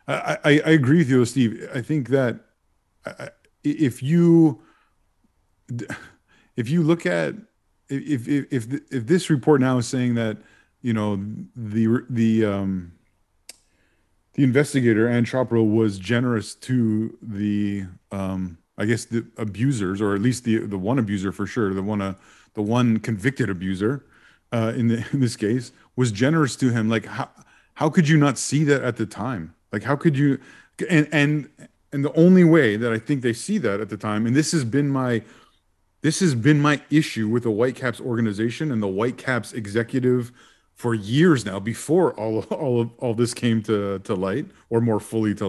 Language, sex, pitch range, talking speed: English, male, 110-140 Hz, 180 wpm